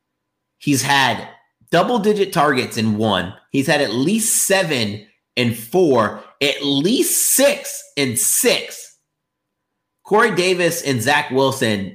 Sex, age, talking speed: male, 30-49, 120 wpm